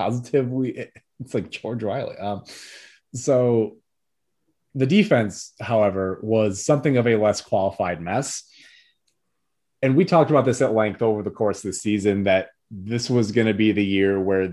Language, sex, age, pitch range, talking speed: English, male, 30-49, 100-125 Hz, 160 wpm